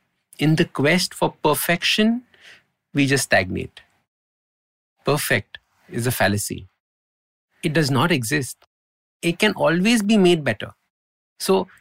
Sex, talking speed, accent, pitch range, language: male, 115 wpm, Indian, 110-155 Hz, English